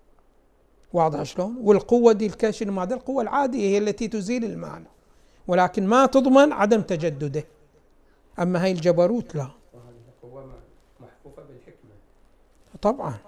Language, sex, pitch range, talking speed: Arabic, male, 175-230 Hz, 100 wpm